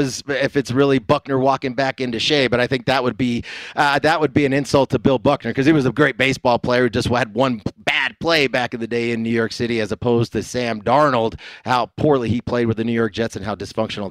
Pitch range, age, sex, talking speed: 115-135 Hz, 30-49, male, 255 wpm